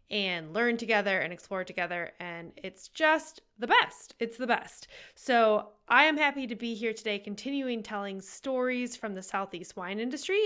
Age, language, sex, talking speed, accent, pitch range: 20-39, English, female, 170 wpm, American, 195-265 Hz